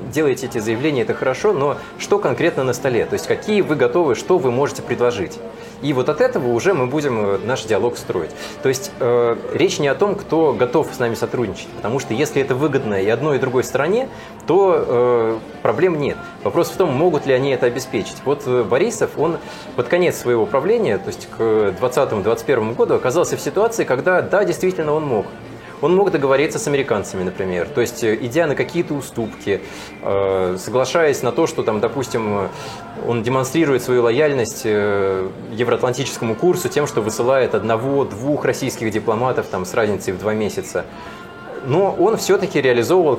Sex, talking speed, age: male, 170 wpm, 20-39